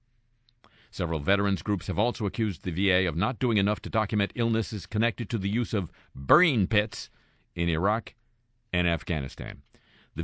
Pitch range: 80-120 Hz